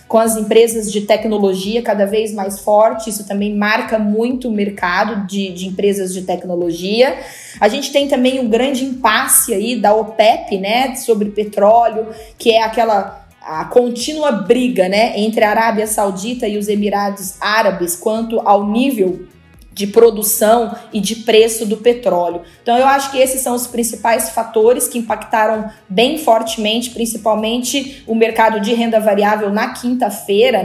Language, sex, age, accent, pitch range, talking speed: Portuguese, female, 20-39, Brazilian, 210-270 Hz, 150 wpm